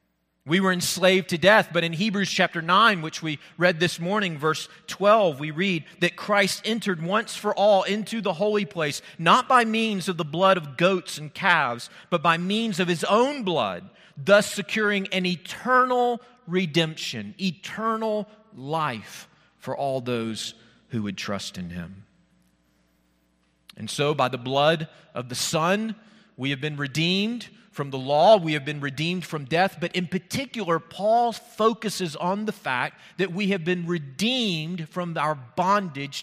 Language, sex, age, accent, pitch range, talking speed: English, male, 40-59, American, 155-210 Hz, 160 wpm